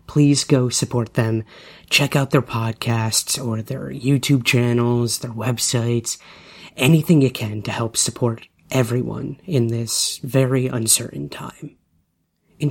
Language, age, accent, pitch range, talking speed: English, 30-49, American, 115-135 Hz, 125 wpm